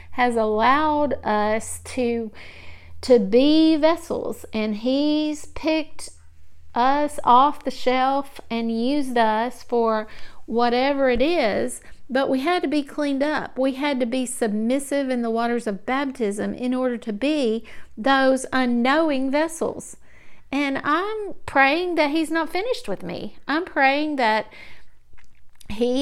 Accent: American